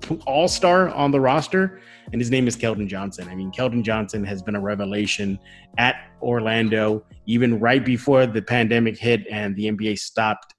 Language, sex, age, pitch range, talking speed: English, male, 30-49, 105-130 Hz, 175 wpm